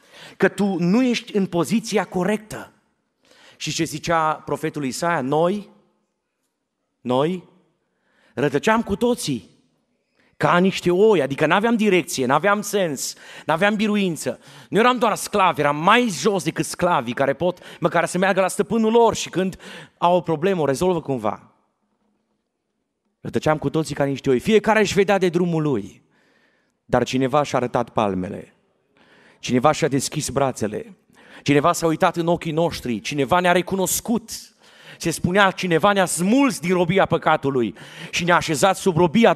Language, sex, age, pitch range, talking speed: Romanian, male, 30-49, 150-200 Hz, 155 wpm